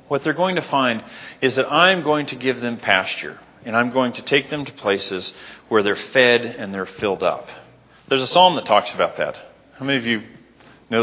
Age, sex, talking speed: 40-59, male, 250 wpm